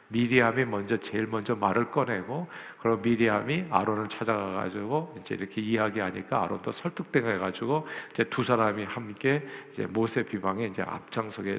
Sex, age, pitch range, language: male, 50-69, 110-140 Hz, Korean